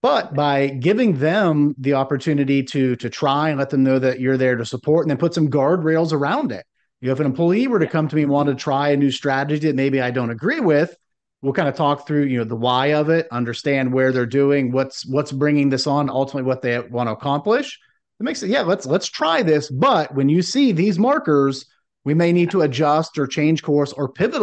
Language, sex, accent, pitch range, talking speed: English, male, American, 130-160 Hz, 240 wpm